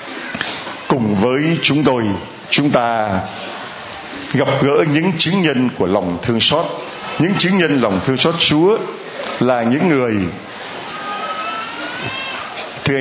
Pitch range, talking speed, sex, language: 120-160 Hz, 120 wpm, male, Vietnamese